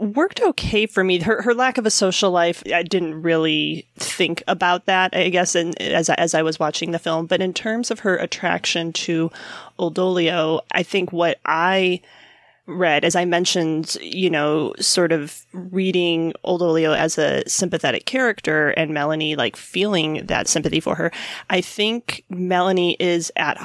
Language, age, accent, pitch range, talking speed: English, 30-49, American, 165-190 Hz, 165 wpm